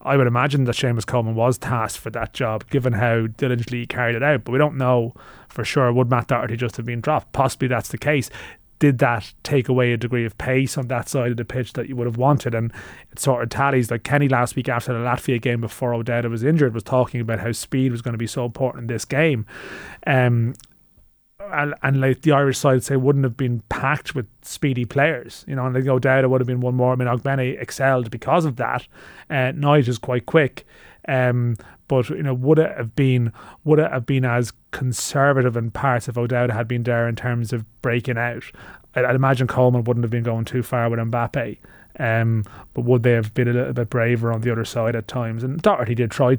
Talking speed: 235 wpm